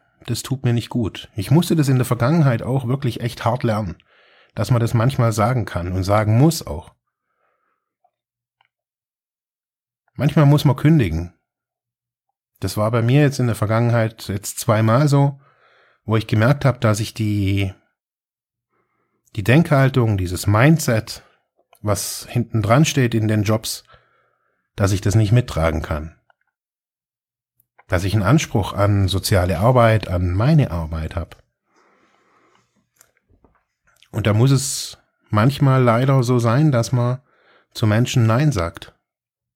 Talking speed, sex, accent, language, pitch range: 135 wpm, male, German, German, 100-130 Hz